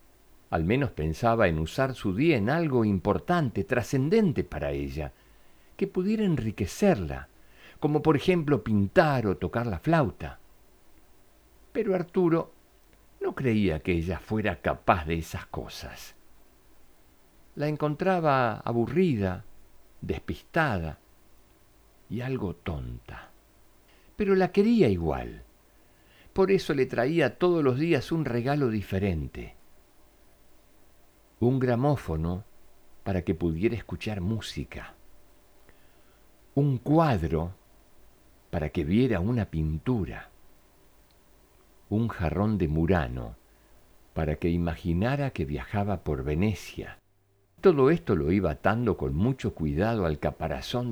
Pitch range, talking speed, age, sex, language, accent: 85-130 Hz, 105 wpm, 60-79, male, Spanish, Argentinian